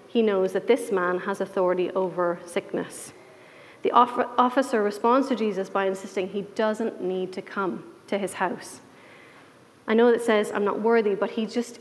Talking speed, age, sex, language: 185 wpm, 30-49, female, English